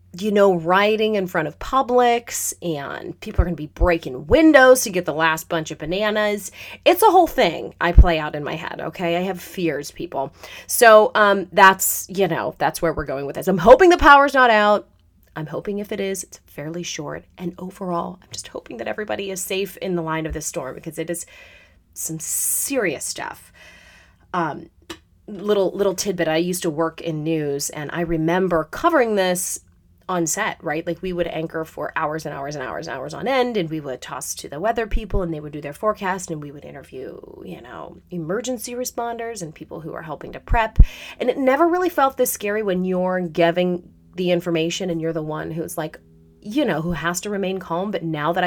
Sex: female